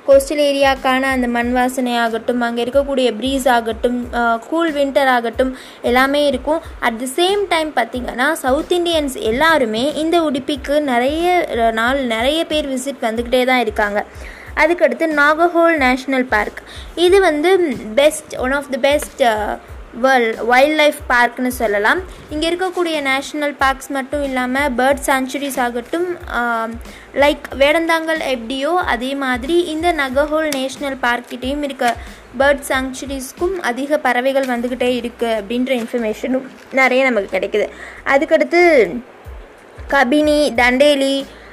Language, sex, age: Tamil, female, 20-39